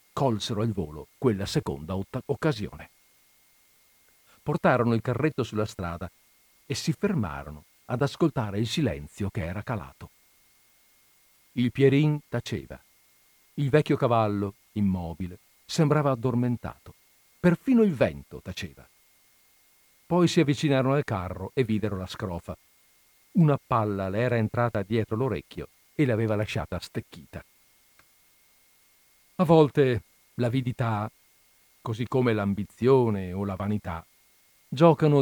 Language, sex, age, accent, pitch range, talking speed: Italian, male, 50-69, native, 100-145 Hz, 110 wpm